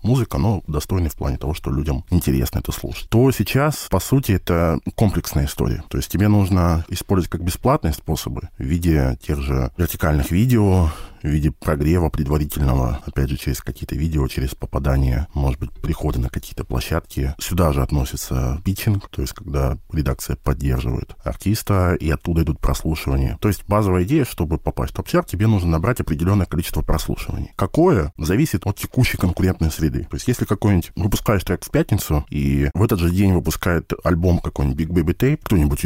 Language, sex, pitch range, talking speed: Russian, male, 70-95 Hz, 170 wpm